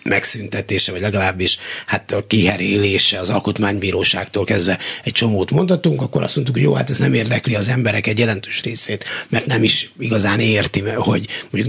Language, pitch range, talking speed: Hungarian, 100-130 Hz, 165 wpm